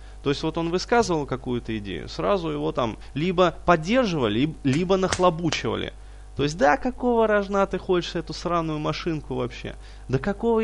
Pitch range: 110-165 Hz